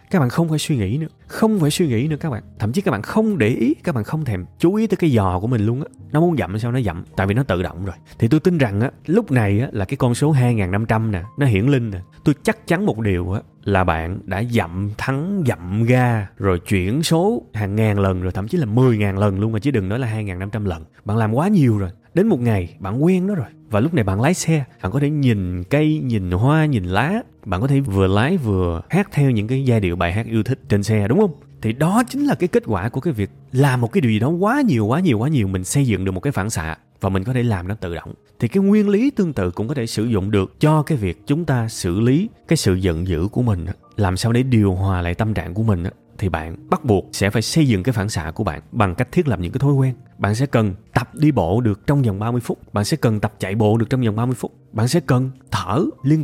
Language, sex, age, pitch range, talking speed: Vietnamese, male, 20-39, 100-155 Hz, 285 wpm